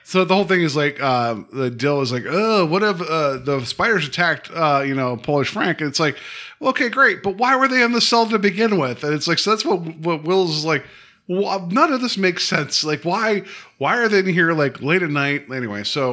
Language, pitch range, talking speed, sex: English, 120-170 Hz, 250 wpm, male